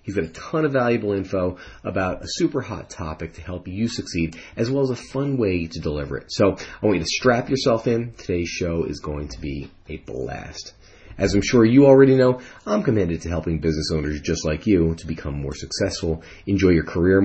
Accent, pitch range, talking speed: American, 80-110 Hz, 220 wpm